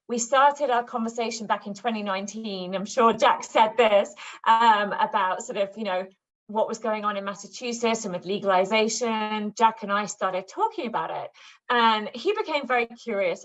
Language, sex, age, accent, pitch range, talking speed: English, female, 30-49, British, 195-250 Hz, 175 wpm